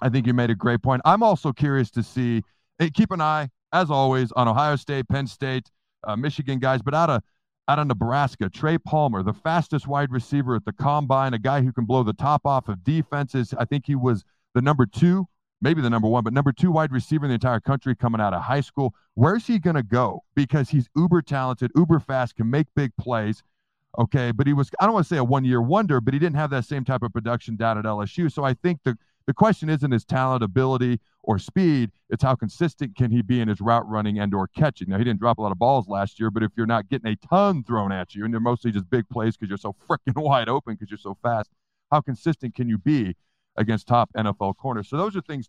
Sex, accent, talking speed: male, American, 245 wpm